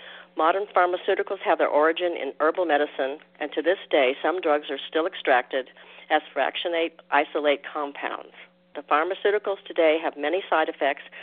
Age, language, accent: 50-69, English, American